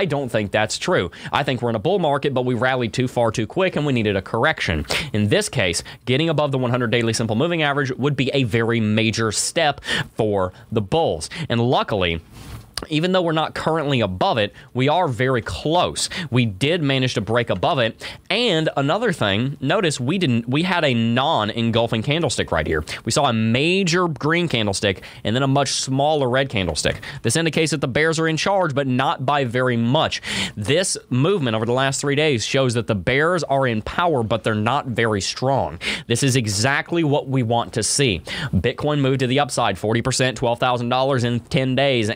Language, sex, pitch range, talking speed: English, male, 110-140 Hz, 205 wpm